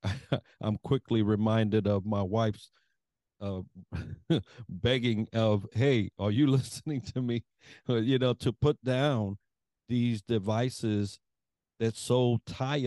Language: English